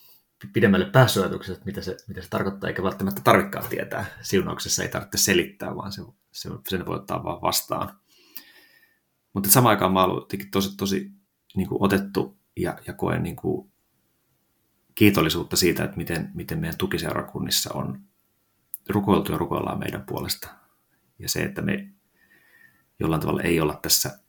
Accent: native